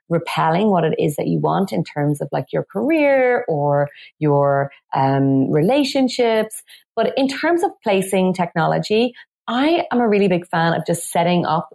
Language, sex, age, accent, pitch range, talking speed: English, female, 30-49, Irish, 160-220 Hz, 170 wpm